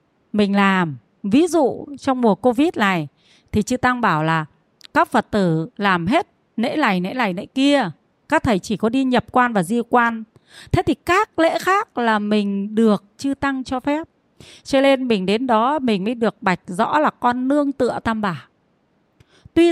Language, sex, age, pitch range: Vietnamese, female, 30-49, 210-285 Hz